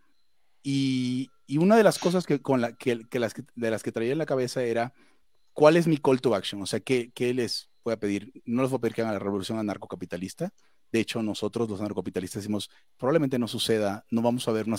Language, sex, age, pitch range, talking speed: Spanish, male, 30-49, 105-140 Hz, 240 wpm